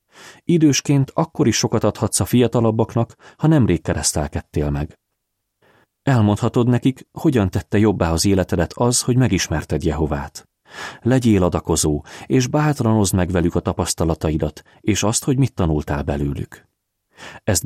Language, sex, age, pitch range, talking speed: Hungarian, male, 30-49, 80-115 Hz, 125 wpm